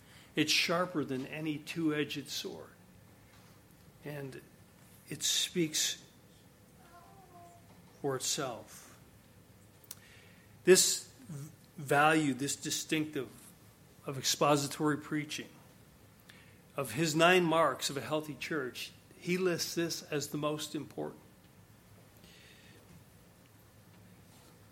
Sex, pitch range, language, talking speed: male, 130-155 Hz, English, 80 wpm